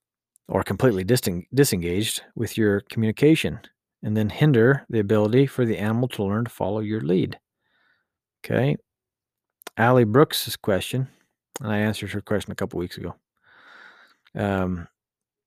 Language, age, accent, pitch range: English, 40-59, American, 105-135 Hz